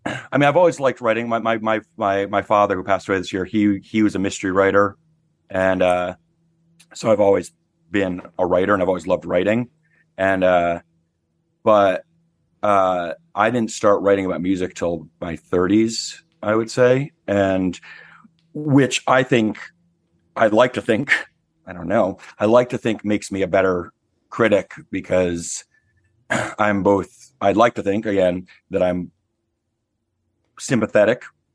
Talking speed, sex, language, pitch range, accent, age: 160 wpm, male, English, 90-125 Hz, American, 30-49